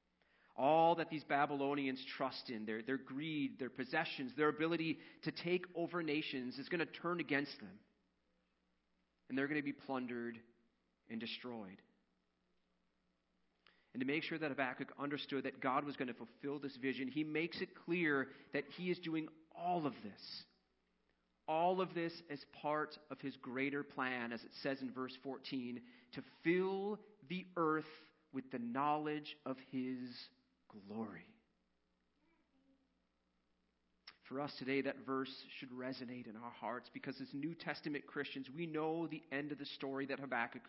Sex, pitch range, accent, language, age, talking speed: male, 120-155 Hz, American, English, 30-49, 155 wpm